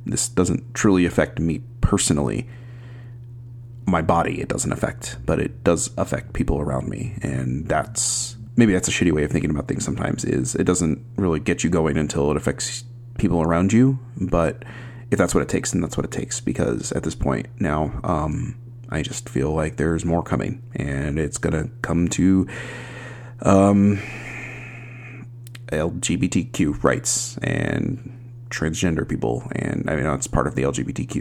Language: English